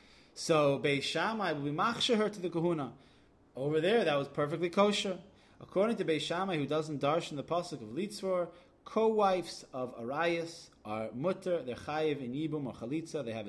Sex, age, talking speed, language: male, 20-39, 175 wpm, English